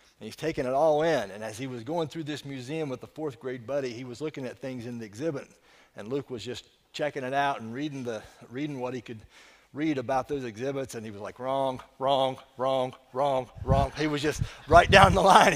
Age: 40-59